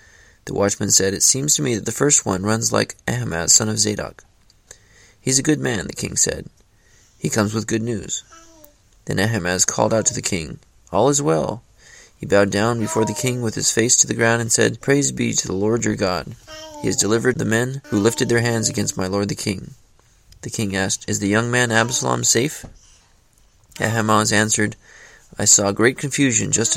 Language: English